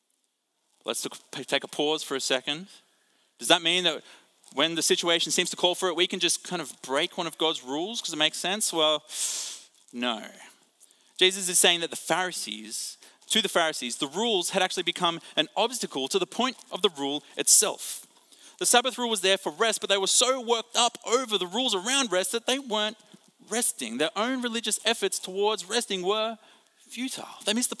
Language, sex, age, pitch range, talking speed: English, male, 30-49, 175-240 Hz, 195 wpm